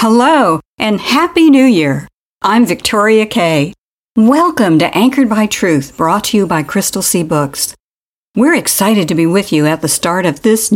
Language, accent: English, American